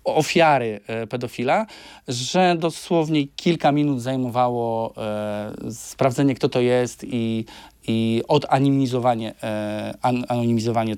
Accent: native